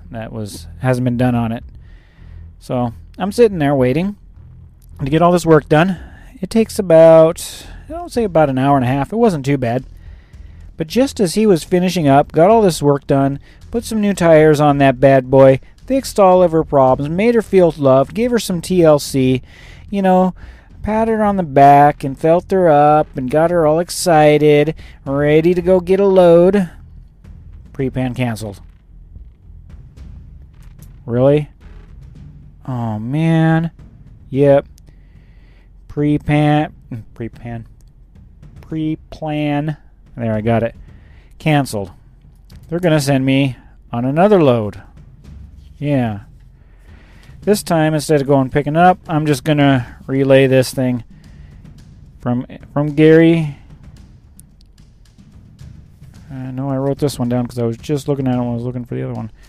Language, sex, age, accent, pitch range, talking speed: English, male, 40-59, American, 115-160 Hz, 155 wpm